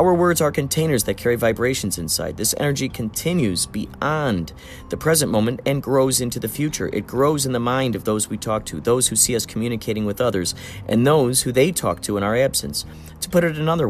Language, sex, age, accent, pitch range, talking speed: English, male, 40-59, American, 90-130 Hz, 215 wpm